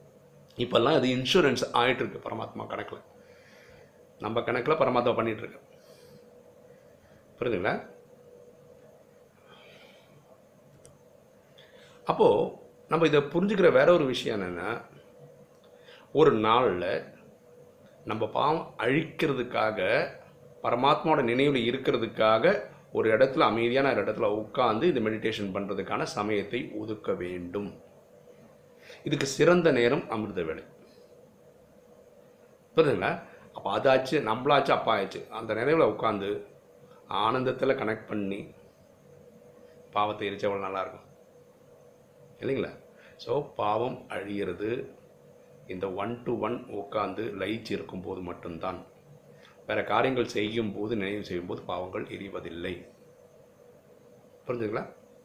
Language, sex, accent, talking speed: Tamil, male, native, 85 wpm